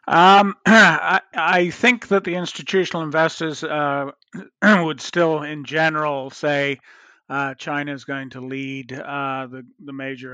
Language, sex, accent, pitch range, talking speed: English, male, American, 135-160 Hz, 140 wpm